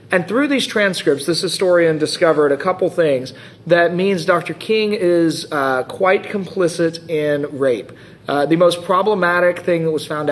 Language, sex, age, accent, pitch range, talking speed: English, male, 40-59, American, 145-175 Hz, 165 wpm